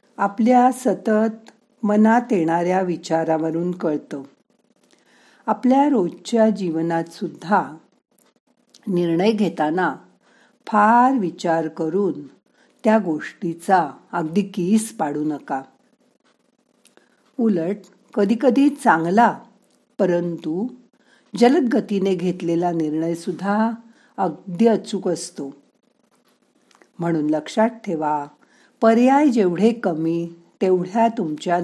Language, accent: Marathi, native